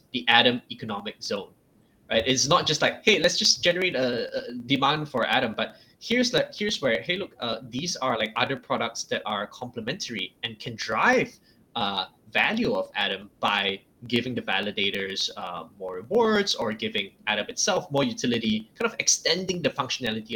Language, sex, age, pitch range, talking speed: English, male, 10-29, 115-170 Hz, 175 wpm